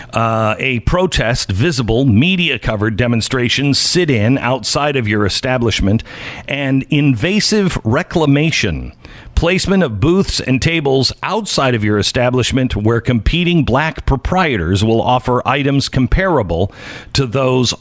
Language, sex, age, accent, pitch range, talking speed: English, male, 50-69, American, 120-155 Hz, 120 wpm